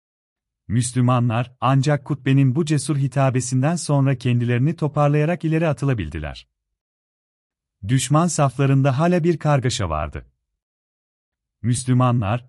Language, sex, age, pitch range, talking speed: Turkish, male, 40-59, 90-145 Hz, 85 wpm